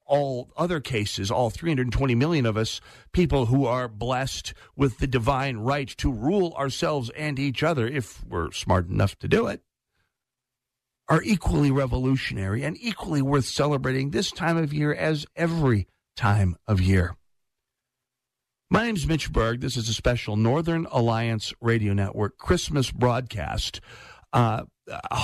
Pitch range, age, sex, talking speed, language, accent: 100-140 Hz, 50-69, male, 145 wpm, English, American